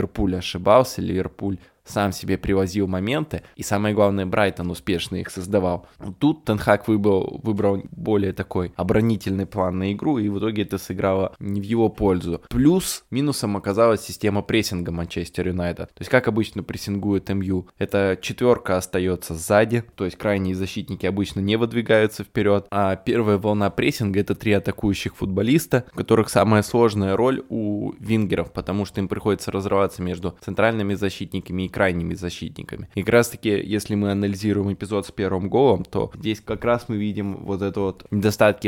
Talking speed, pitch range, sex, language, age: 165 wpm, 95-110 Hz, male, Russian, 20-39